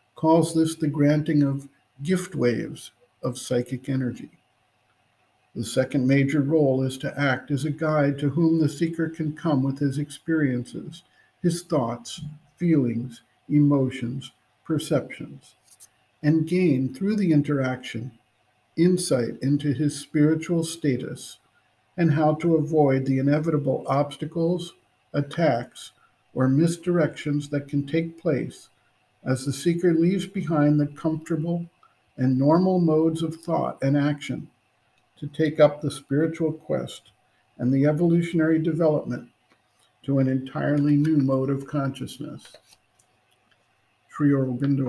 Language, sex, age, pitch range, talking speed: English, male, 50-69, 130-160 Hz, 120 wpm